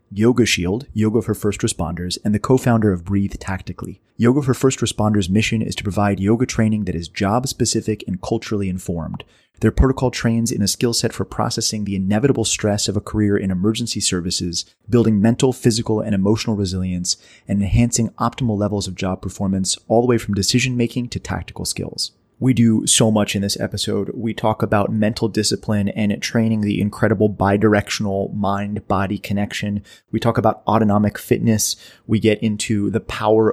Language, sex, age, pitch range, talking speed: English, male, 30-49, 100-115 Hz, 175 wpm